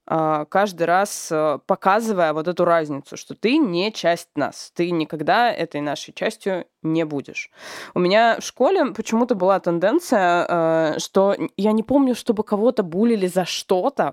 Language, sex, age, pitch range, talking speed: Russian, female, 20-39, 165-215 Hz, 145 wpm